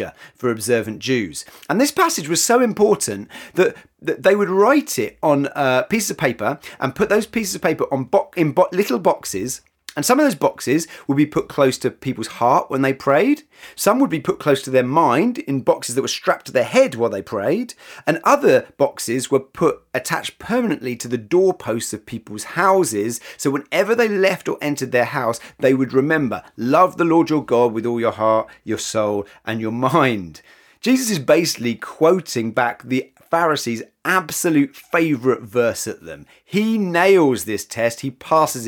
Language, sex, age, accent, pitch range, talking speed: English, male, 30-49, British, 115-185 Hz, 190 wpm